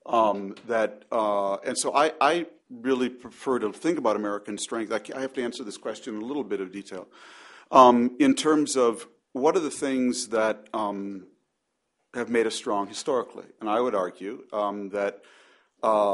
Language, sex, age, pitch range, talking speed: English, male, 40-59, 100-125 Hz, 180 wpm